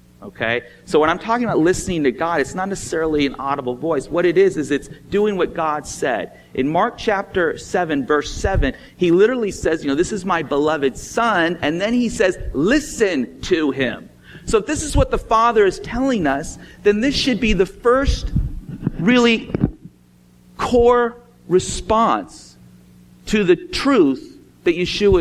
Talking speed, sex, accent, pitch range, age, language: 170 wpm, male, American, 120-195 Hz, 40-59, English